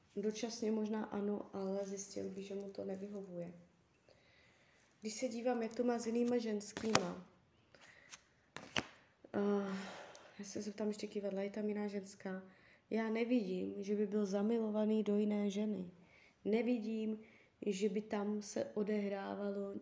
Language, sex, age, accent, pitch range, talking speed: Czech, female, 20-39, native, 195-215 Hz, 135 wpm